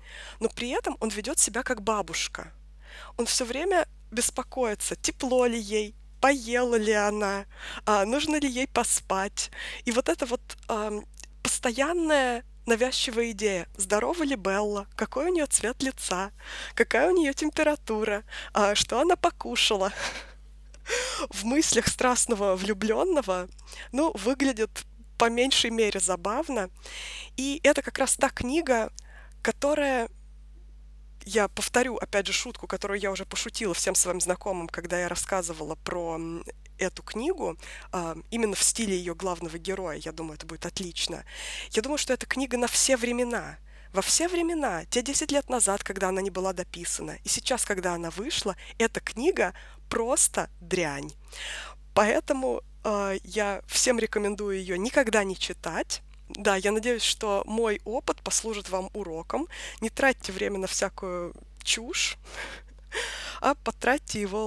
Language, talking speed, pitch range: Russian, 135 wpm, 190-255 Hz